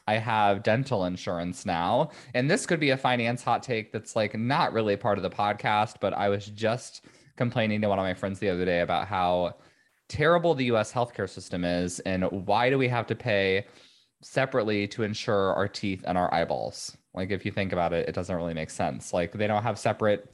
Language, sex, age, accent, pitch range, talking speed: English, male, 20-39, American, 95-125 Hz, 215 wpm